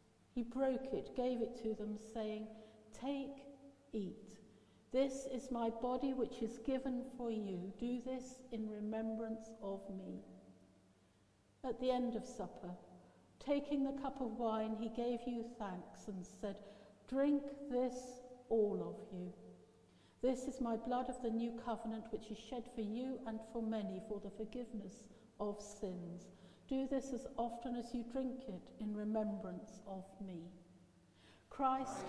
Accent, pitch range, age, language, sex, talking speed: British, 210-250 Hz, 60-79, English, female, 150 wpm